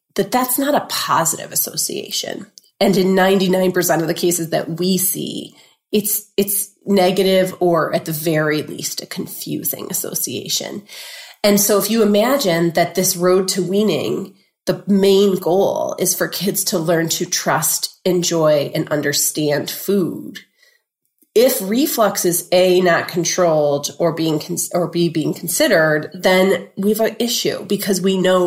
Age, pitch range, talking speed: 30-49, 165-210 Hz, 150 wpm